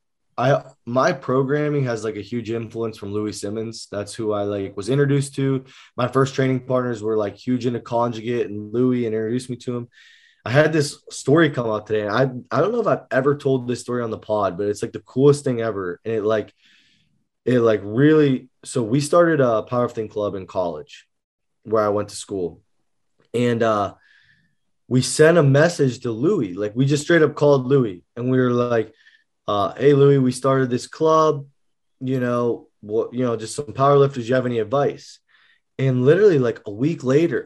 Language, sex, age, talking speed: English, male, 20-39, 200 wpm